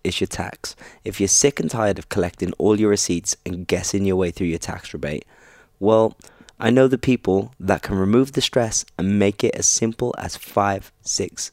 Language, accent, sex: English, British, male